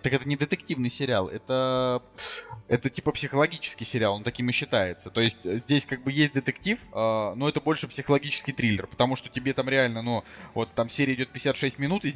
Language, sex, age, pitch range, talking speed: Russian, male, 20-39, 120-150 Hz, 190 wpm